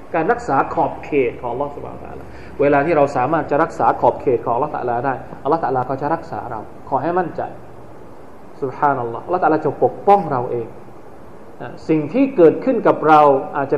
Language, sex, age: Thai, male, 20-39